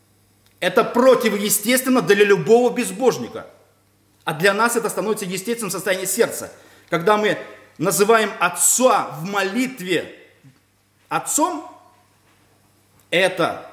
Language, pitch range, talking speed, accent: Russian, 165-215 Hz, 90 wpm, native